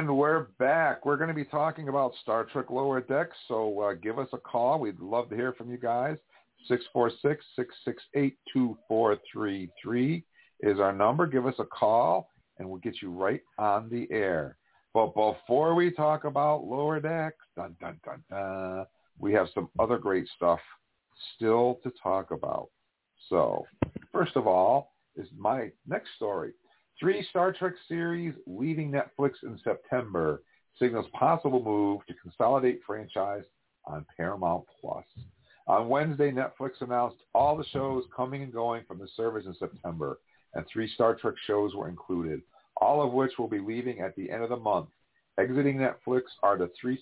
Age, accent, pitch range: 50-69, American, 110-145 Hz